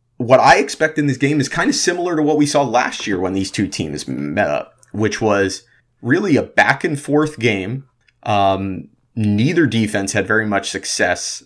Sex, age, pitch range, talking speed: male, 30-49, 105-130 Hz, 195 wpm